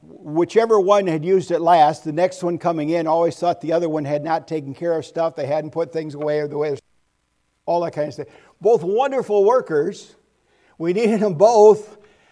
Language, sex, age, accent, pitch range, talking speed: English, male, 60-79, American, 145-200 Hz, 205 wpm